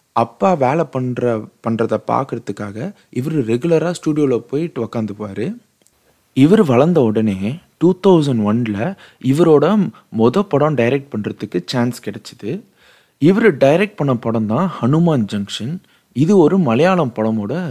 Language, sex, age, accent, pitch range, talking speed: Tamil, male, 30-49, native, 110-170 Hz, 120 wpm